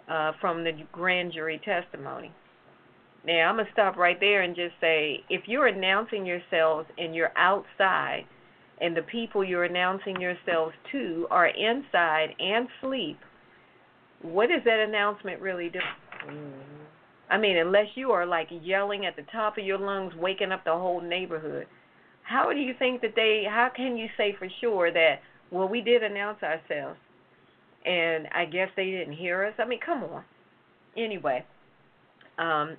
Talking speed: 165 wpm